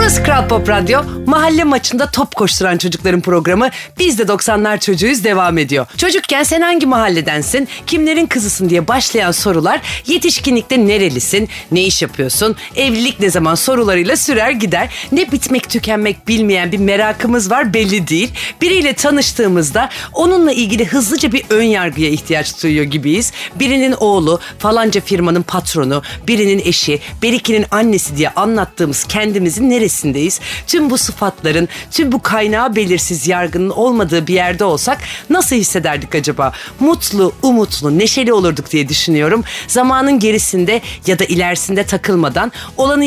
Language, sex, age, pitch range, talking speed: Turkish, female, 40-59, 175-260 Hz, 135 wpm